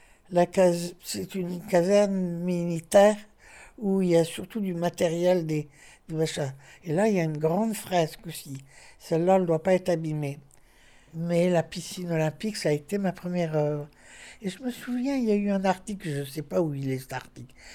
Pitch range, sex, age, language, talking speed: 150-185 Hz, male, 60-79, French, 205 wpm